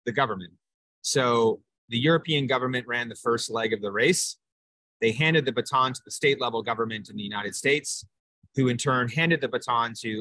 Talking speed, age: 195 wpm, 30-49